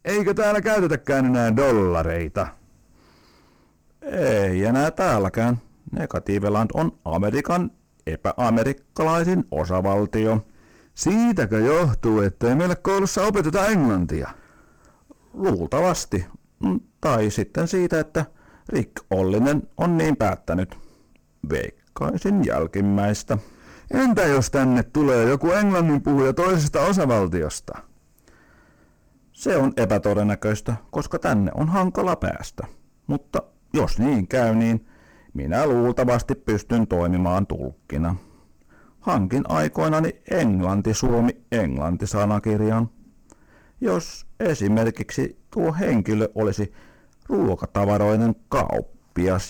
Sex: male